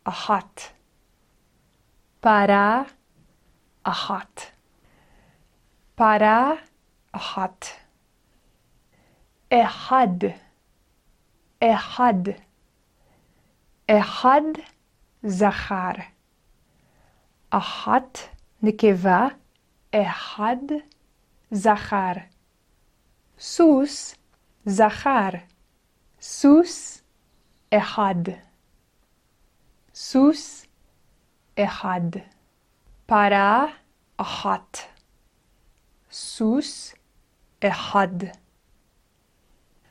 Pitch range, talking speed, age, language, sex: 200-255 Hz, 35 wpm, 30-49, Hebrew, female